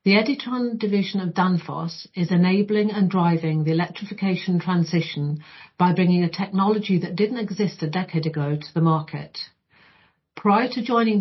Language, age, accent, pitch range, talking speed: English, 50-69, British, 165-190 Hz, 150 wpm